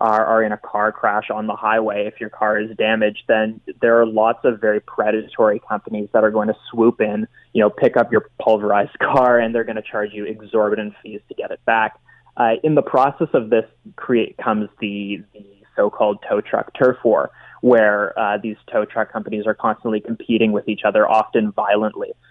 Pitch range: 105-115 Hz